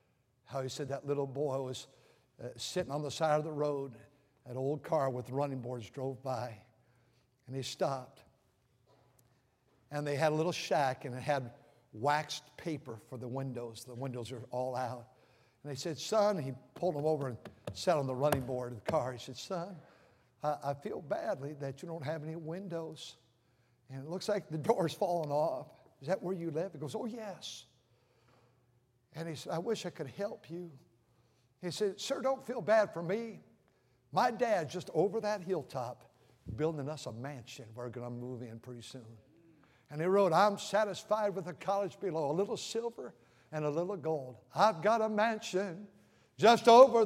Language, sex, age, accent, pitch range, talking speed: English, male, 60-79, American, 125-175 Hz, 190 wpm